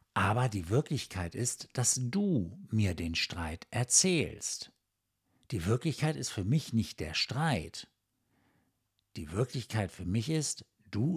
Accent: German